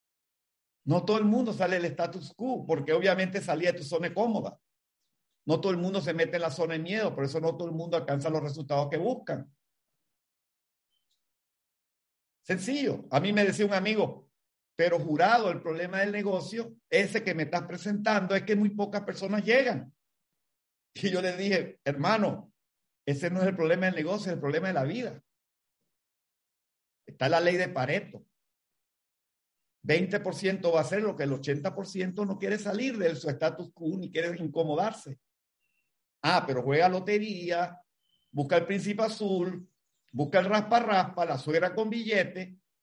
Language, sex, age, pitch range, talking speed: Spanish, male, 50-69, 160-210 Hz, 165 wpm